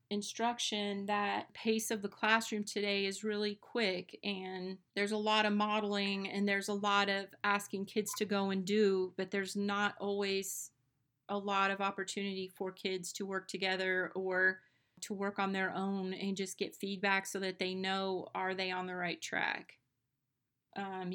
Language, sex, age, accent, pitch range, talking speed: English, female, 30-49, American, 190-205 Hz, 175 wpm